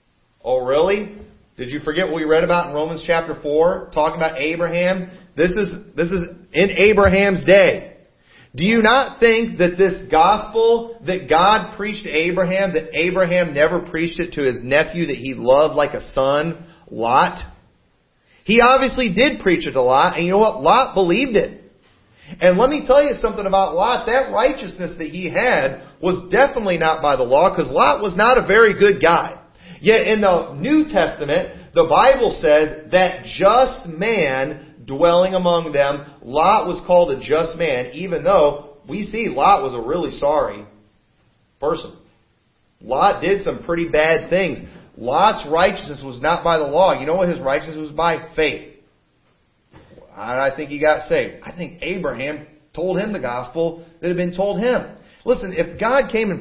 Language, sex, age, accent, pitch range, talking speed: English, male, 40-59, American, 155-200 Hz, 175 wpm